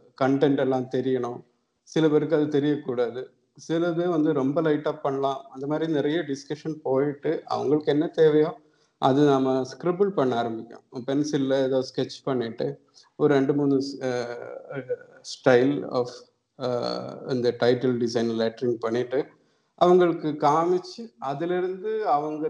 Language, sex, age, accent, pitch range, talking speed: Tamil, male, 50-69, native, 130-155 Hz, 115 wpm